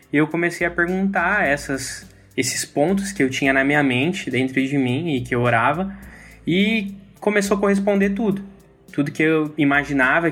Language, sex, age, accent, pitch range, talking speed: Portuguese, male, 20-39, Brazilian, 140-180 Hz, 165 wpm